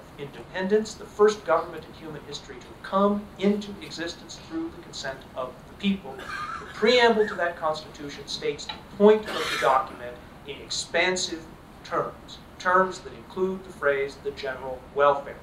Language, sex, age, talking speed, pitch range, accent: English, male, 40-59, 150 wpm, 145-205 Hz, American